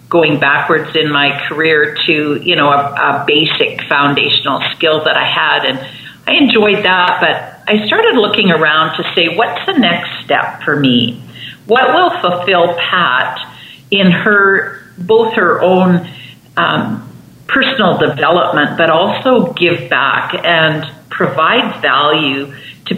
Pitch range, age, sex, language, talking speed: 150-190 Hz, 50-69, female, English, 140 wpm